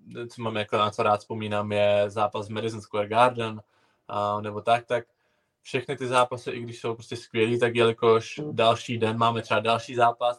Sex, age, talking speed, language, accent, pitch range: male, 20-39, 190 wpm, Czech, native, 110-120 Hz